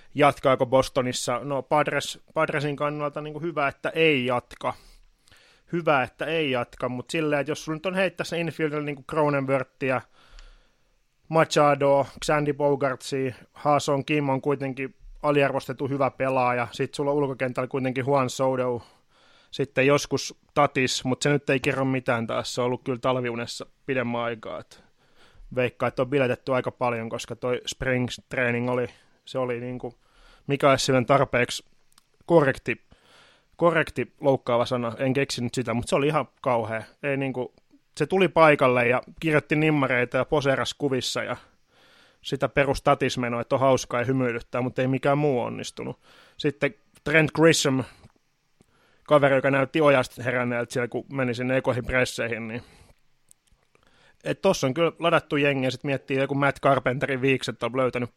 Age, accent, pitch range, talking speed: 20-39, native, 125-145 Hz, 145 wpm